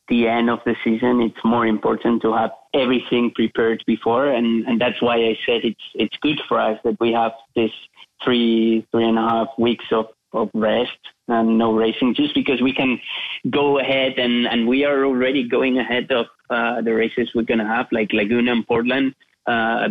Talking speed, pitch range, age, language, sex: 200 wpm, 115-130 Hz, 20-39, English, male